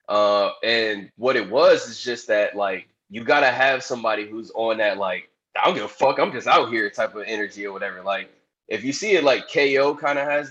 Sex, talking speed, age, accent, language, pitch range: male, 235 wpm, 10-29, American, English, 100-115 Hz